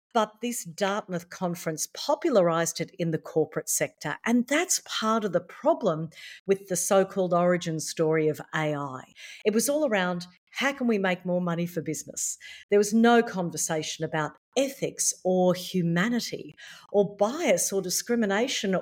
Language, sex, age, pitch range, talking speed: English, female, 50-69, 165-205 Hz, 150 wpm